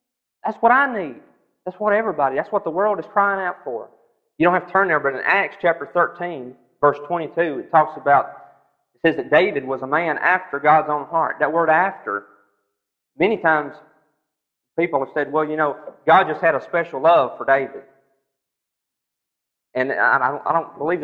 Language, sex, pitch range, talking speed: English, male, 140-175 Hz, 185 wpm